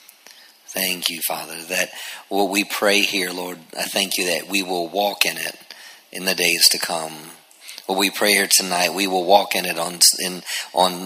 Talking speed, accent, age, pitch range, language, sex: 195 wpm, American, 50-69, 90-100 Hz, English, male